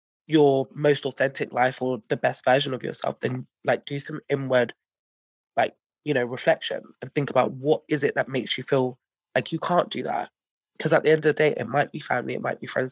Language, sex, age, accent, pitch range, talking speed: English, male, 20-39, British, 130-155 Hz, 230 wpm